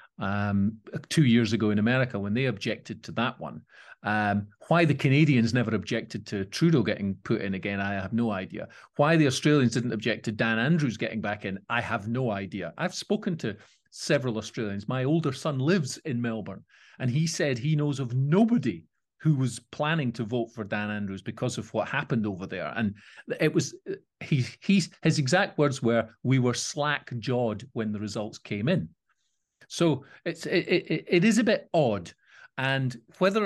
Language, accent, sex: English, British, male